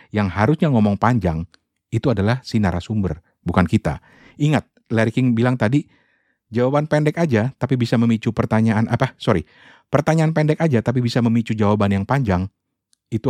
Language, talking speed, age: Indonesian, 155 wpm, 50-69